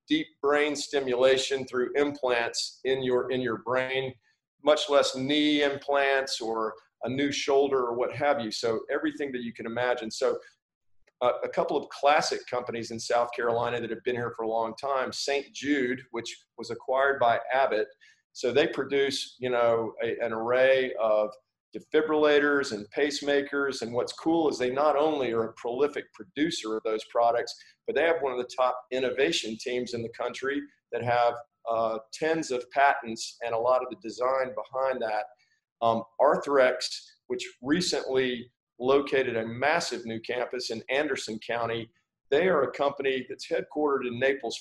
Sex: male